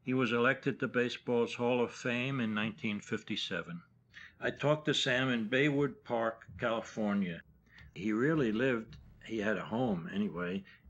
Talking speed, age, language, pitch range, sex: 145 wpm, 60-79, English, 100-130 Hz, male